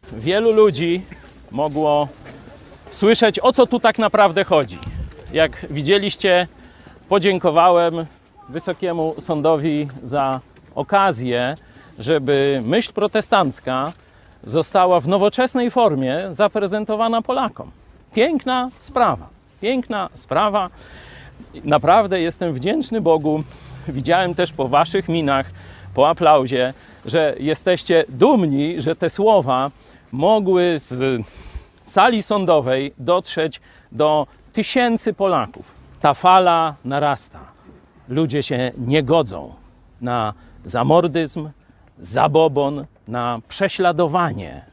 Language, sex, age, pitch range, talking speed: Polish, male, 40-59, 130-200 Hz, 90 wpm